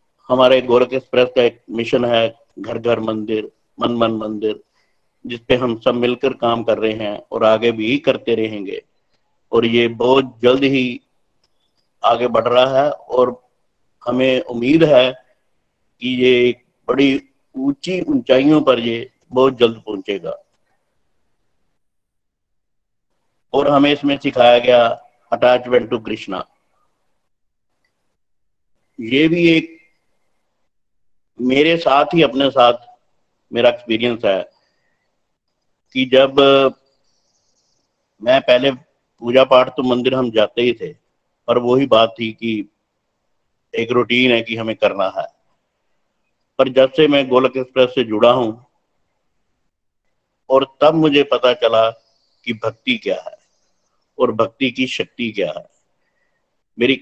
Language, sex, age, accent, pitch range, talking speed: Hindi, male, 50-69, native, 115-135 Hz, 125 wpm